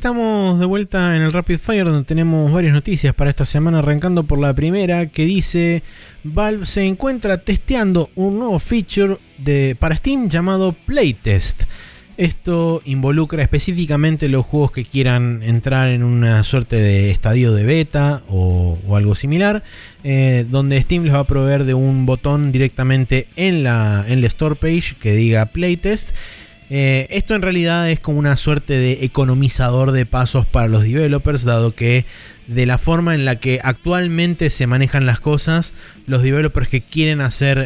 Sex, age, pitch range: male, 20-39, 115-160 Hz